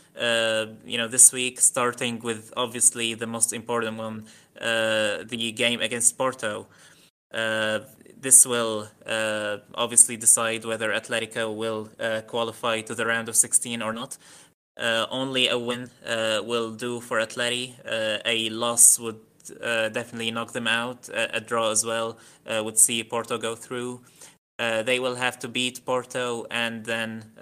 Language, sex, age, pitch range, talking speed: English, male, 20-39, 110-120 Hz, 160 wpm